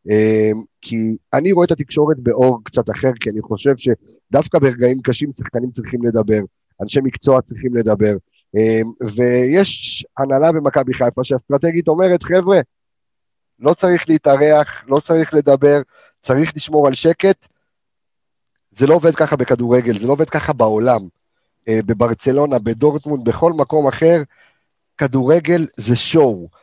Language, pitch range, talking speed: Hebrew, 120-155 Hz, 135 wpm